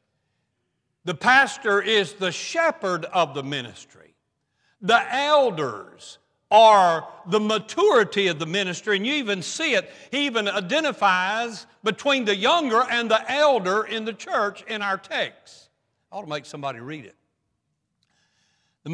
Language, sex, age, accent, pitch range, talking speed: English, male, 60-79, American, 150-230 Hz, 140 wpm